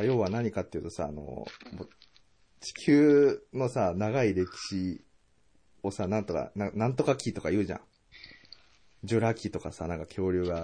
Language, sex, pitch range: Japanese, male, 90-115 Hz